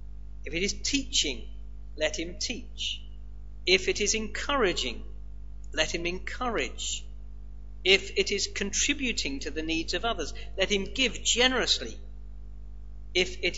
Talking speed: 130 wpm